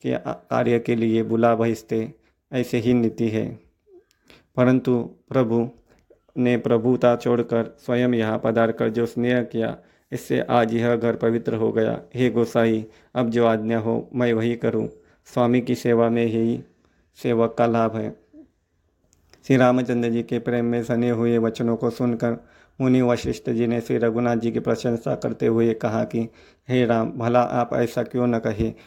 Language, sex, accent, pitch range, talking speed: Hindi, male, native, 115-120 Hz, 160 wpm